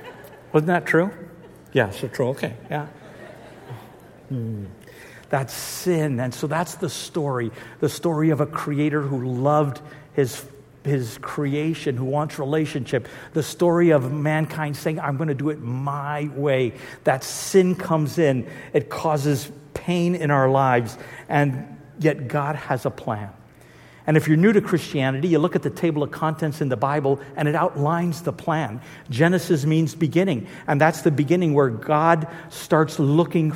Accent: American